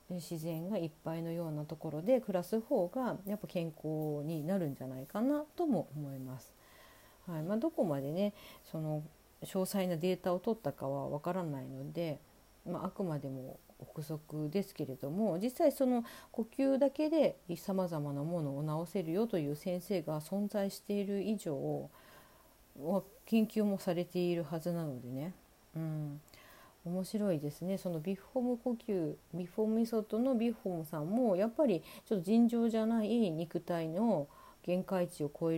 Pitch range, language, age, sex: 150-210 Hz, Japanese, 40-59, female